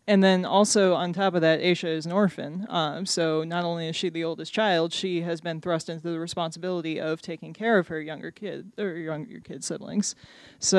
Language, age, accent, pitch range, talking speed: English, 20-39, American, 170-205 Hz, 215 wpm